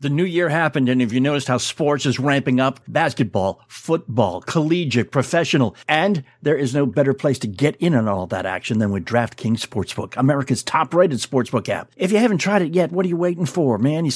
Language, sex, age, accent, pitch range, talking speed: English, male, 60-79, American, 125-175 Hz, 215 wpm